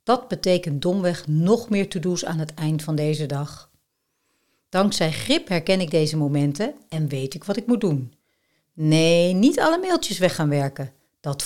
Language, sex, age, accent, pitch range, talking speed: Dutch, female, 60-79, Dutch, 150-235 Hz, 175 wpm